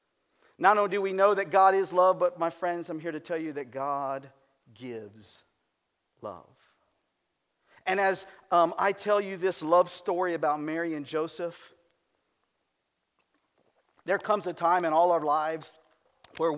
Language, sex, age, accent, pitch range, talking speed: English, male, 50-69, American, 150-195 Hz, 155 wpm